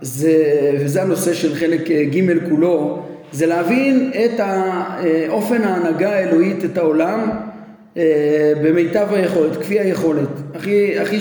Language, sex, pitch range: Hebrew, male, 160-205 Hz